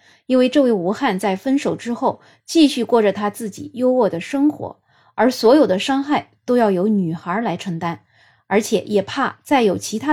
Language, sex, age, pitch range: Chinese, female, 20-39, 190-255 Hz